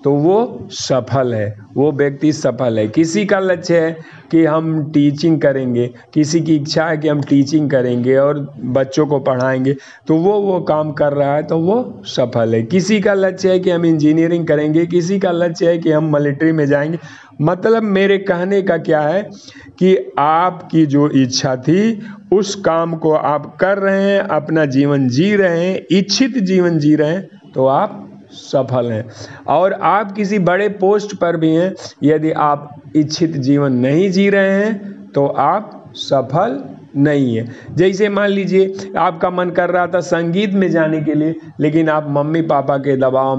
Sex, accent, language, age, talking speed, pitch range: male, native, Hindi, 50-69, 175 wpm, 140-180 Hz